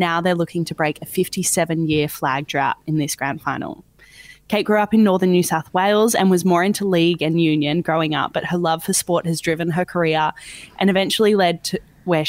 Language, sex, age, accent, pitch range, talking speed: English, female, 20-39, Australian, 160-190 Hz, 215 wpm